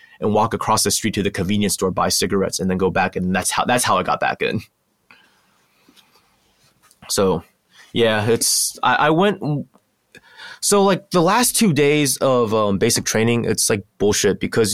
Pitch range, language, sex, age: 95-125 Hz, English, male, 20-39